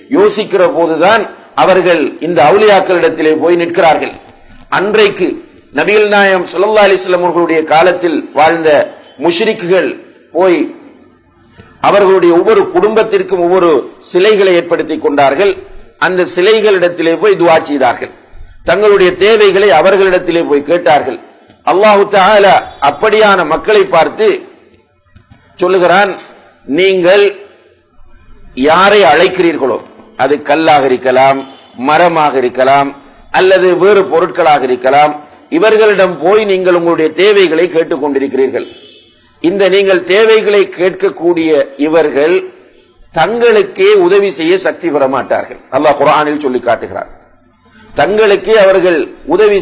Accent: Indian